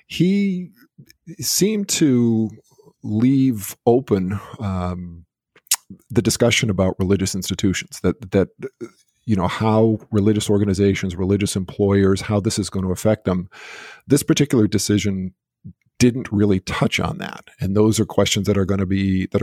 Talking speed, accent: 140 wpm, American